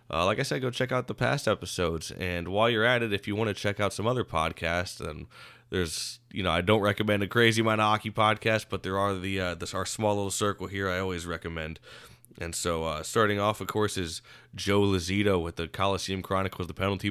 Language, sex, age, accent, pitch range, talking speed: English, male, 20-39, American, 90-110 Hz, 235 wpm